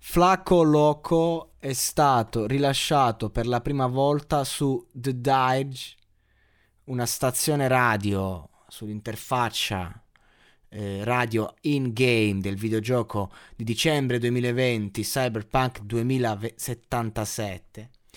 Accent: native